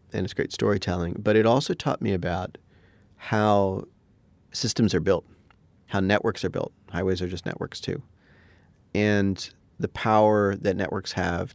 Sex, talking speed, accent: male, 150 wpm, American